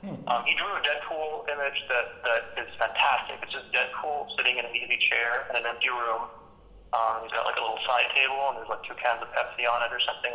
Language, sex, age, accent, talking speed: English, male, 40-59, American, 240 wpm